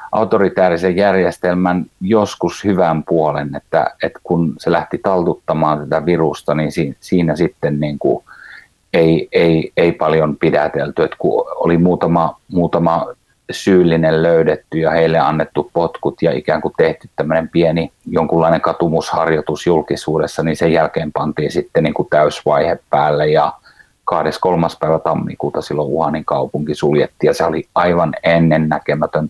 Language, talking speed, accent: Finnish, 130 wpm, native